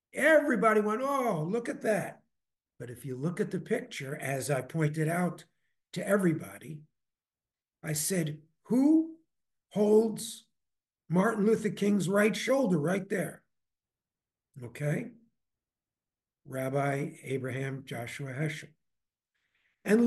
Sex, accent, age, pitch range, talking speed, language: male, American, 60-79, 145-210 Hz, 110 wpm, English